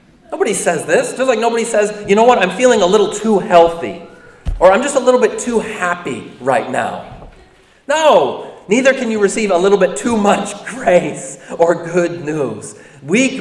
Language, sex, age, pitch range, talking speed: English, male, 30-49, 150-210 Hz, 185 wpm